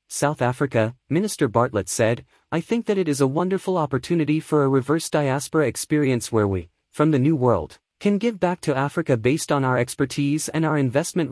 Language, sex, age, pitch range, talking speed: English, male, 30-49, 130-160 Hz, 190 wpm